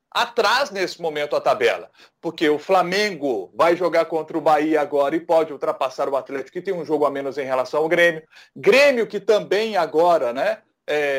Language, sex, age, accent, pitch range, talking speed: Portuguese, male, 40-59, Brazilian, 160-230 Hz, 180 wpm